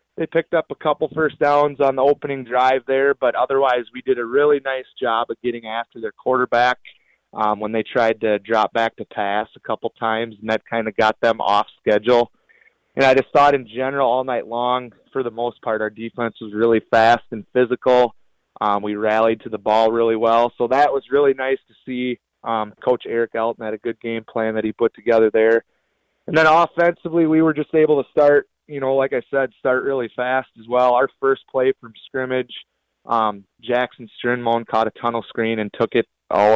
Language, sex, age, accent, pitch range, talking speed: English, male, 20-39, American, 110-130 Hz, 210 wpm